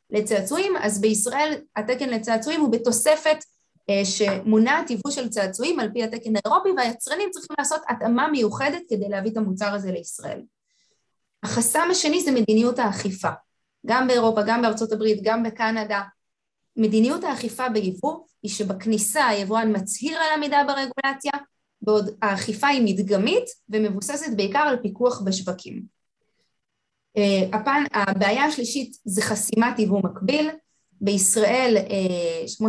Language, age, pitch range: Hebrew, 20-39, 205-275 Hz